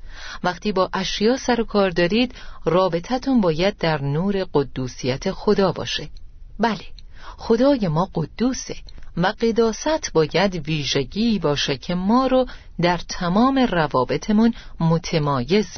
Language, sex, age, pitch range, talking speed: Persian, female, 40-59, 155-220 Hz, 115 wpm